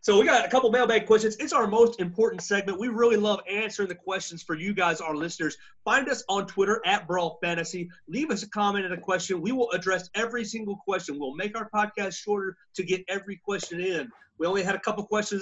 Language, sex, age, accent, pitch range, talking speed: English, male, 30-49, American, 165-215 Hz, 230 wpm